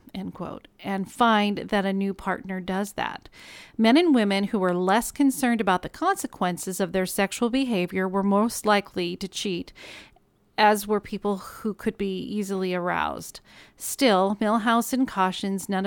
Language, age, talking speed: English, 40-59, 160 wpm